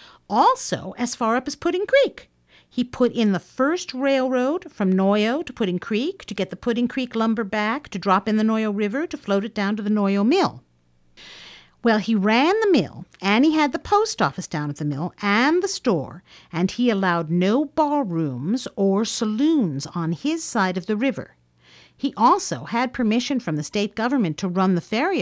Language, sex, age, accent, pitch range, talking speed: English, female, 50-69, American, 175-285 Hz, 195 wpm